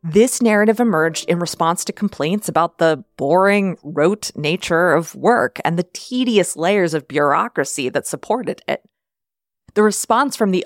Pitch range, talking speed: 175-230 Hz, 150 wpm